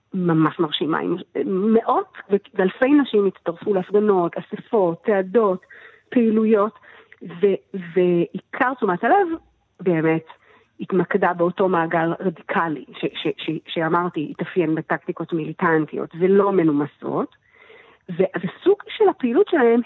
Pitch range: 175-230 Hz